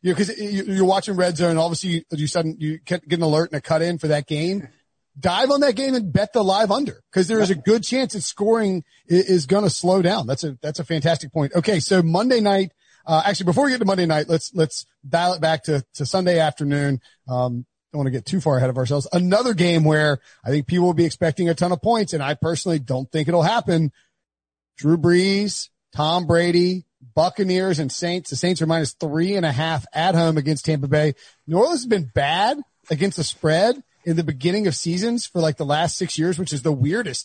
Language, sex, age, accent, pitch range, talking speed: English, male, 40-59, American, 155-185 Hz, 230 wpm